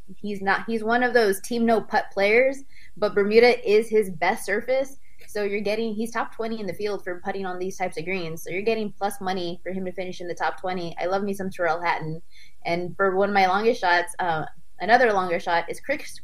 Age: 20-39